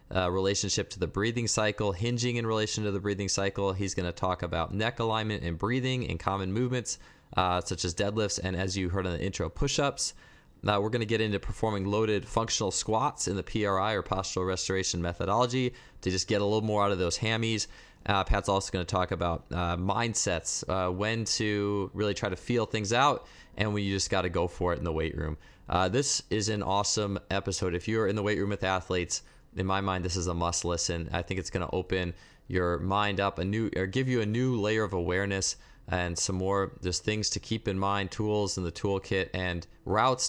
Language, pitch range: English, 90-110 Hz